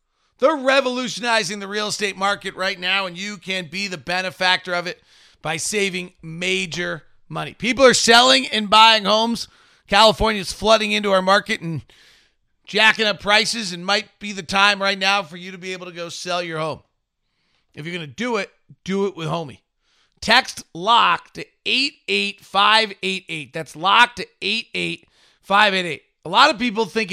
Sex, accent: male, American